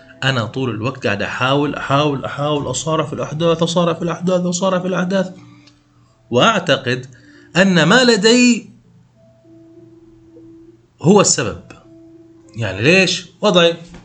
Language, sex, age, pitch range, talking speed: Arabic, male, 30-49, 125-175 Hz, 105 wpm